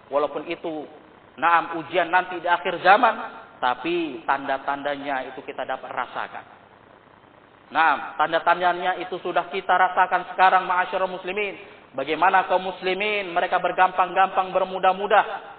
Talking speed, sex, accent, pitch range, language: 110 wpm, male, native, 170-200 Hz, Indonesian